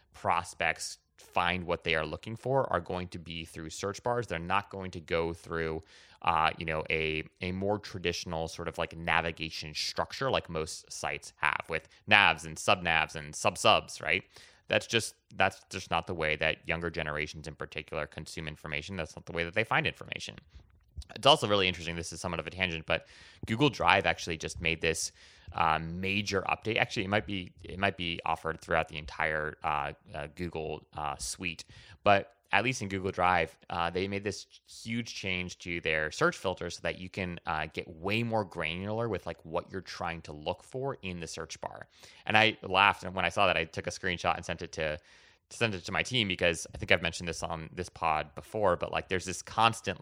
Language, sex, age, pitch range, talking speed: English, male, 30-49, 80-95 Hz, 210 wpm